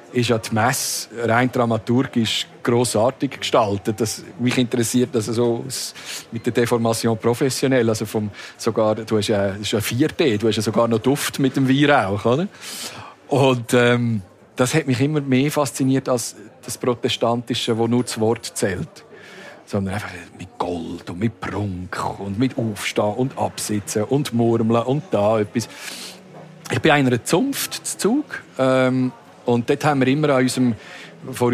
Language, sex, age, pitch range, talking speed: German, male, 50-69, 115-135 Hz, 160 wpm